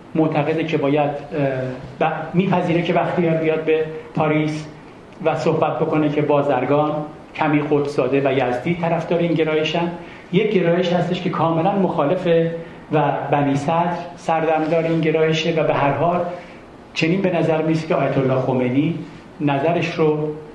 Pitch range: 140-170 Hz